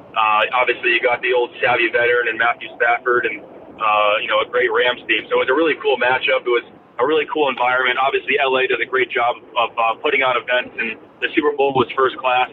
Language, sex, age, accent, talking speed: English, male, 30-49, American, 240 wpm